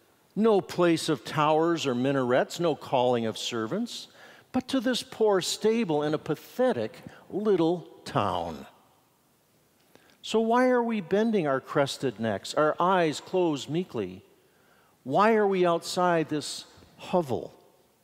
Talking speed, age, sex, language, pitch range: 125 wpm, 50-69, male, English, 125-185 Hz